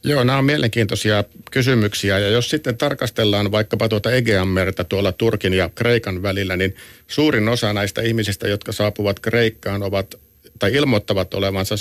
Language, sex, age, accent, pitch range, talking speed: Finnish, male, 50-69, native, 95-115 Hz, 145 wpm